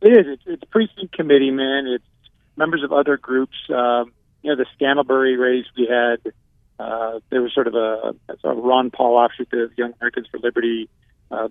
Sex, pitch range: male, 120-140 Hz